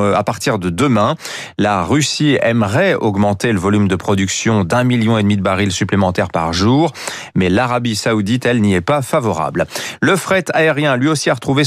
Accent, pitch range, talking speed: French, 105-145 Hz, 185 wpm